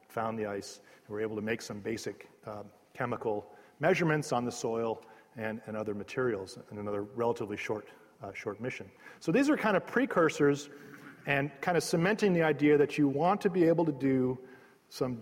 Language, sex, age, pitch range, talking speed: English, male, 40-59, 120-155 Hz, 190 wpm